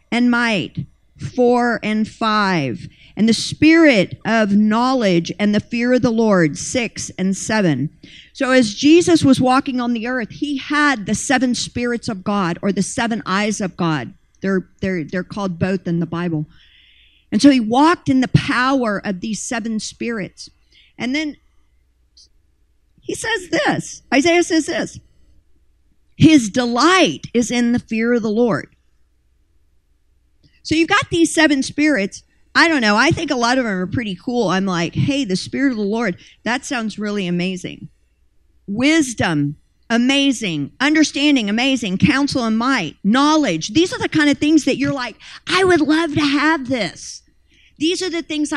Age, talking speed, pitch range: 50-69, 165 wpm, 190-290 Hz